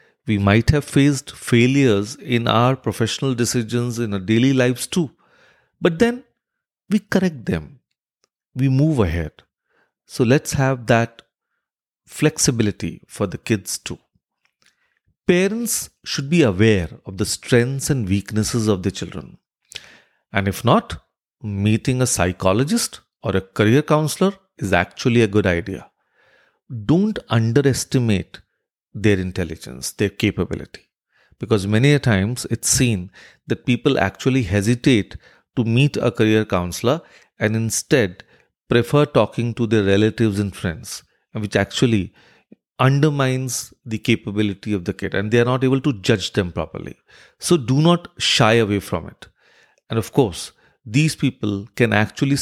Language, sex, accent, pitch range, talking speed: English, male, Indian, 105-140 Hz, 135 wpm